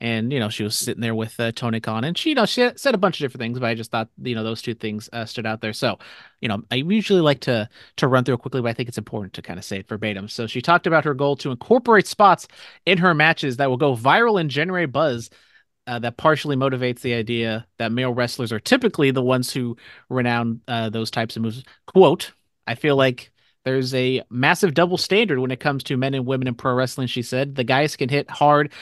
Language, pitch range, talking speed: English, 120-150 Hz, 255 wpm